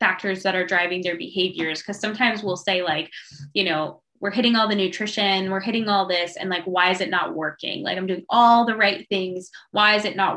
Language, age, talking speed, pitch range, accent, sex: English, 10-29, 230 wpm, 185-225 Hz, American, female